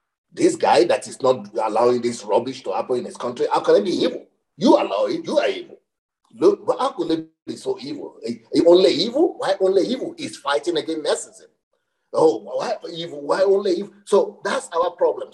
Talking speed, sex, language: 205 wpm, male, English